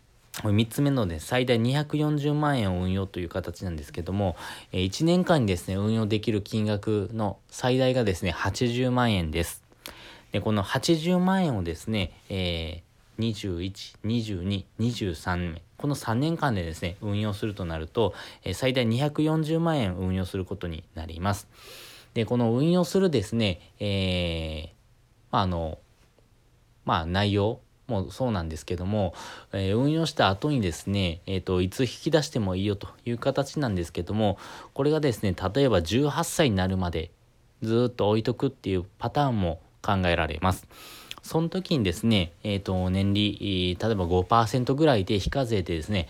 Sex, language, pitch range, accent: male, Japanese, 95-125 Hz, native